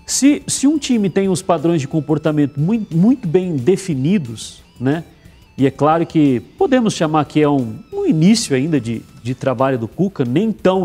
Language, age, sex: Portuguese, 40-59, male